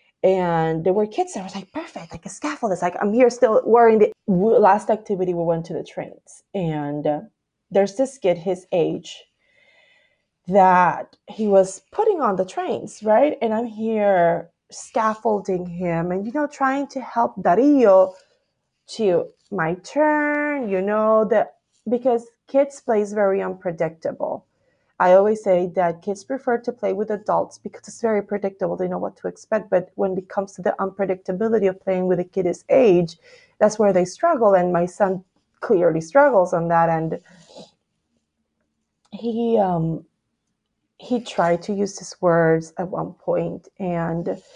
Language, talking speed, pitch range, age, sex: English, 165 wpm, 180-235 Hz, 30-49, female